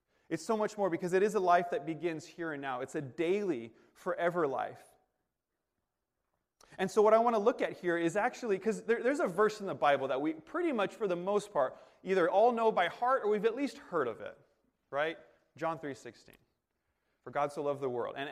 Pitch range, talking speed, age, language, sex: 165-220 Hz, 225 wpm, 30-49, English, male